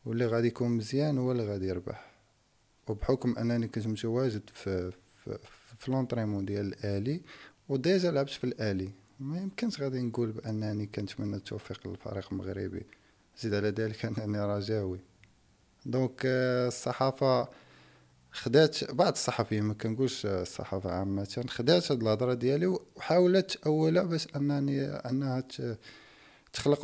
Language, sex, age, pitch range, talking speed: Arabic, male, 40-59, 100-130 Hz, 120 wpm